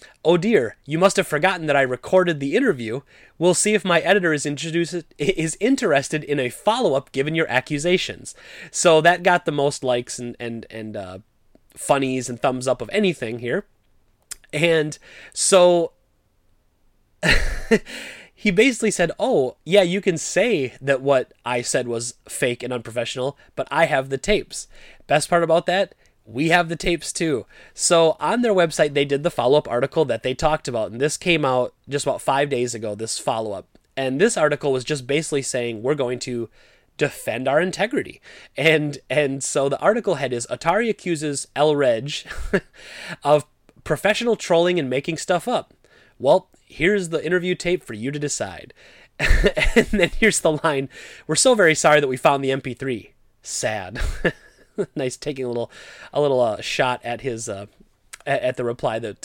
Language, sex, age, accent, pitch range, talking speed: English, male, 30-49, American, 125-175 Hz, 170 wpm